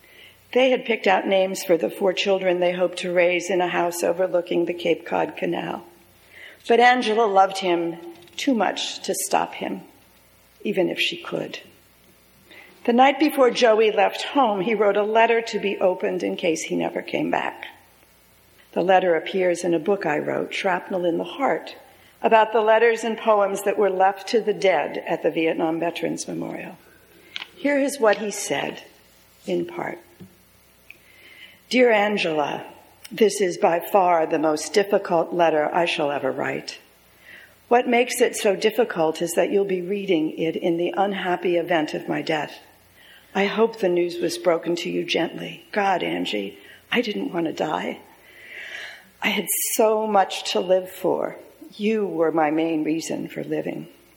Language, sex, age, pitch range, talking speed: English, female, 50-69, 170-215 Hz, 165 wpm